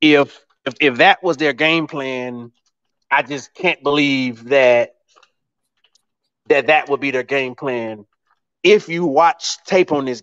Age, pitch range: 30-49, 135-180 Hz